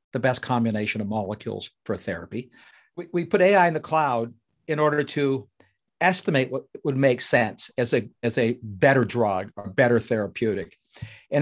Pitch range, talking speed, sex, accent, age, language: 125-170 Hz, 165 wpm, male, American, 60-79, English